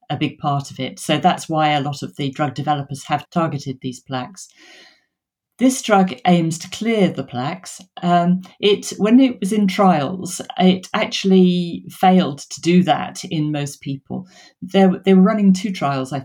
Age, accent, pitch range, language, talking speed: 40-59, British, 145-185 Hz, English, 175 wpm